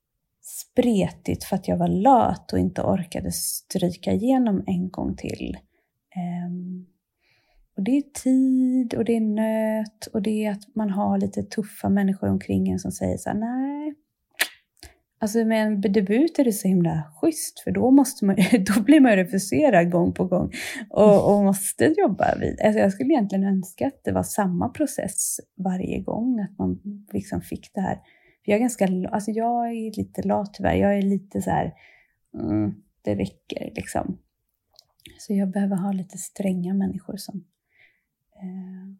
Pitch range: 185-245 Hz